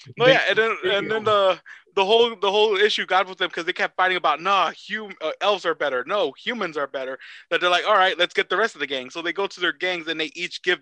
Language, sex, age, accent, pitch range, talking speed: English, male, 20-39, American, 160-225 Hz, 295 wpm